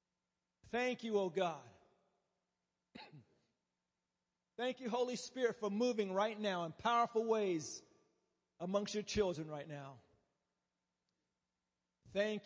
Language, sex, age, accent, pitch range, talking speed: English, male, 40-59, American, 165-235 Hz, 100 wpm